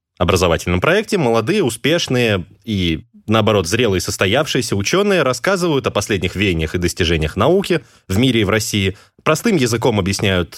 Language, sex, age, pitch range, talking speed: Russian, male, 20-39, 95-130 Hz, 135 wpm